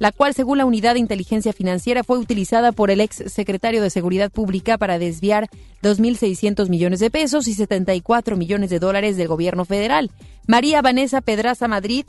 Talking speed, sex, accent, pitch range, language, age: 175 wpm, female, Mexican, 185-230 Hz, Spanish, 30-49